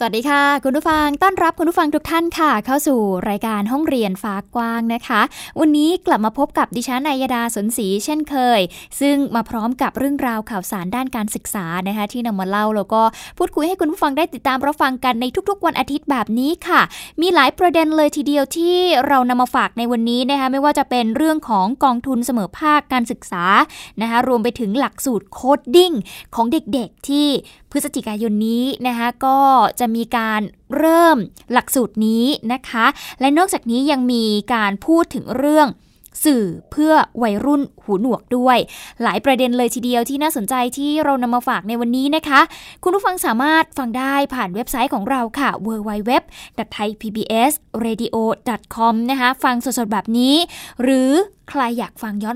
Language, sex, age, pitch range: Thai, female, 10-29, 230-290 Hz